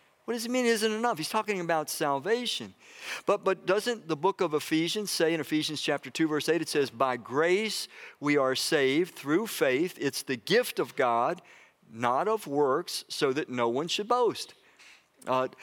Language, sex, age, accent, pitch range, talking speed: English, male, 50-69, American, 155-215 Hz, 185 wpm